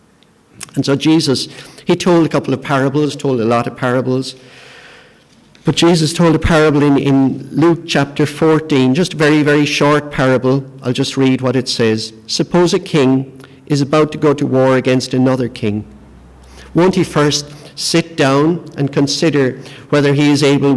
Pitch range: 125-150 Hz